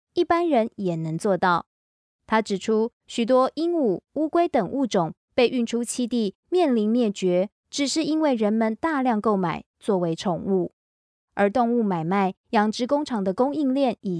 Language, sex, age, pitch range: Chinese, female, 20-39, 185-245 Hz